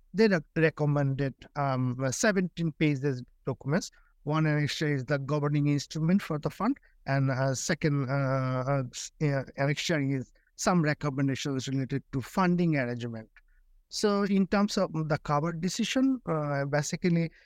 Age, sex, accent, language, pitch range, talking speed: 60-79, male, Indian, English, 140-190 Hz, 120 wpm